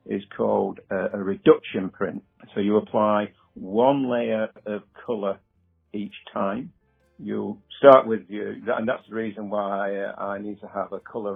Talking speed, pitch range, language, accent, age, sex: 160 wpm, 100-110 Hz, English, British, 50-69, male